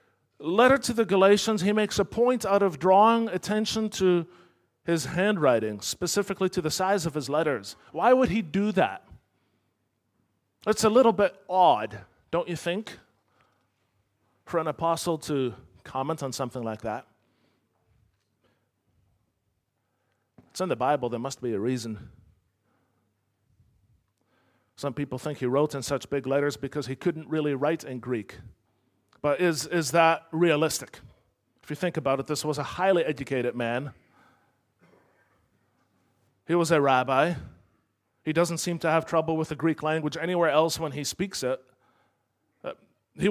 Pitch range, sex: 115-175 Hz, male